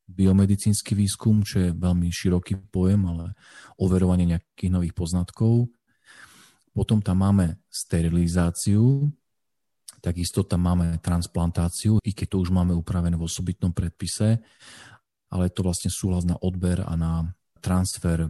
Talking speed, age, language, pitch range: 125 wpm, 40-59, Slovak, 85-105 Hz